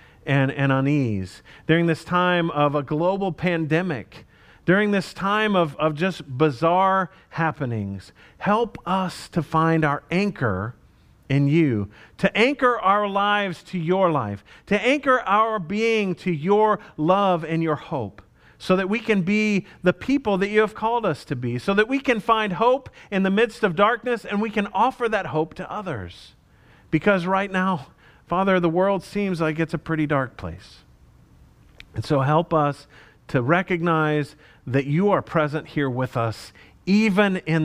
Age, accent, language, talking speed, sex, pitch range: 40-59, American, English, 165 wpm, male, 130-190 Hz